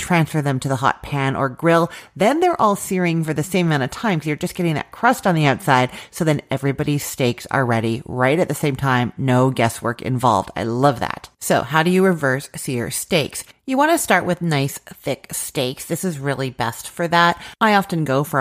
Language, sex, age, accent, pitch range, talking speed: English, female, 30-49, American, 135-180 Hz, 220 wpm